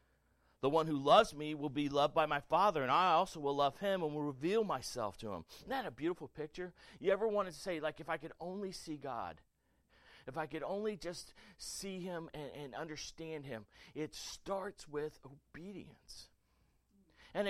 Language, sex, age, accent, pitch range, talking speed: English, male, 40-59, American, 150-195 Hz, 190 wpm